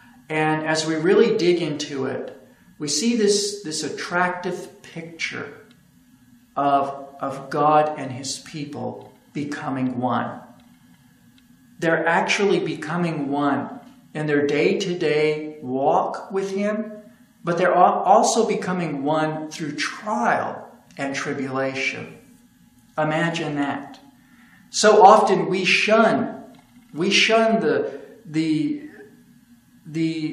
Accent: American